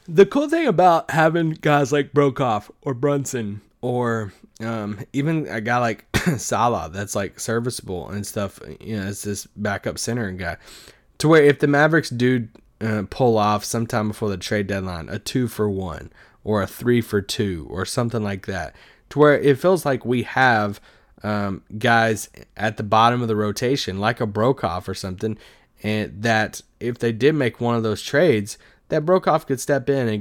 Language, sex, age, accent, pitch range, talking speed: English, male, 20-39, American, 105-135 Hz, 185 wpm